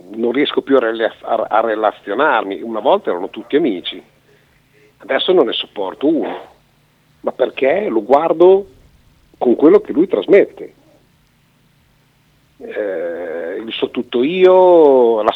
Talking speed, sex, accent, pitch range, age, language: 135 wpm, male, native, 125-205 Hz, 50-69, Italian